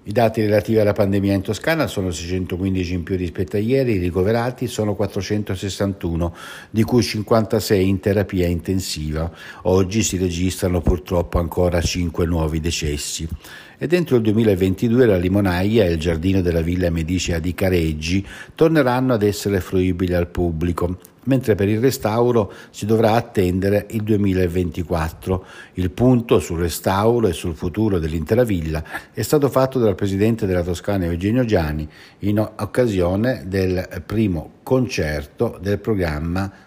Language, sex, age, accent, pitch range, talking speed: Italian, male, 60-79, native, 90-115 Hz, 140 wpm